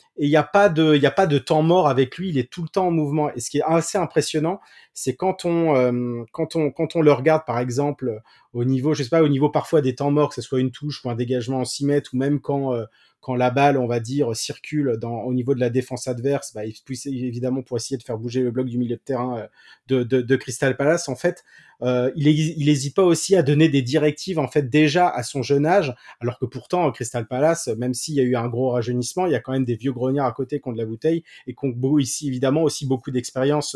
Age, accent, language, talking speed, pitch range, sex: 30-49, French, French, 275 wpm, 125-150 Hz, male